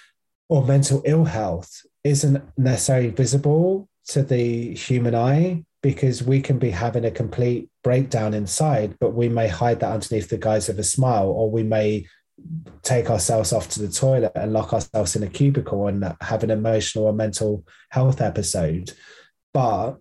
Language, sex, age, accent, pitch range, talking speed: English, male, 20-39, British, 105-125 Hz, 165 wpm